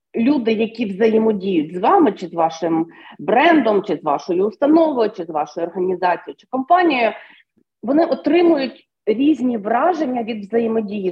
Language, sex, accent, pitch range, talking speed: Ukrainian, female, native, 195-300 Hz, 135 wpm